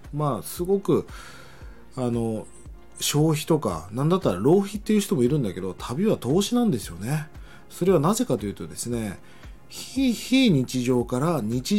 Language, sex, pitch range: Japanese, male, 110-180 Hz